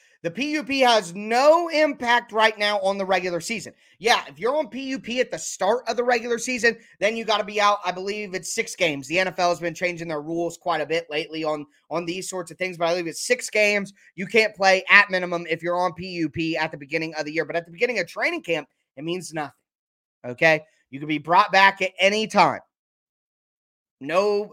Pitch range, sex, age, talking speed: 165-210 Hz, male, 20-39, 225 wpm